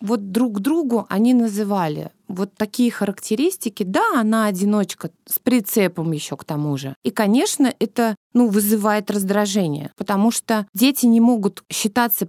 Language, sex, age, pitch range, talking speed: Russian, female, 20-39, 200-250 Hz, 145 wpm